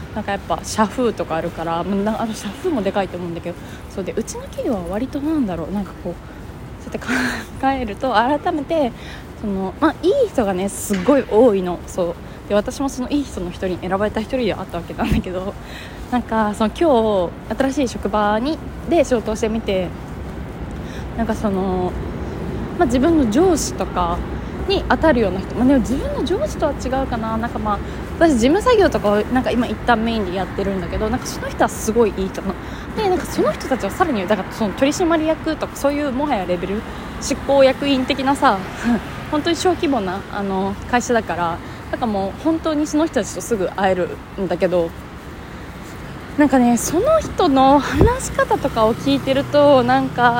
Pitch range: 205-300 Hz